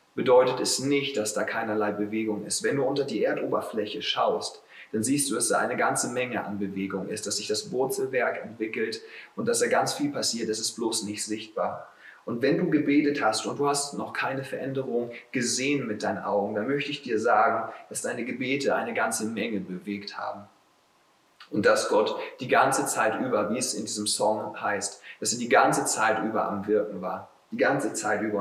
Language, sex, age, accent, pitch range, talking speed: German, male, 30-49, German, 105-180 Hz, 200 wpm